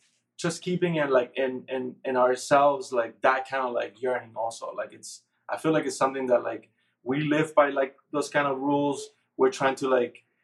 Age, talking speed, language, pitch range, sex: 20-39, 200 wpm, English, 125-145 Hz, male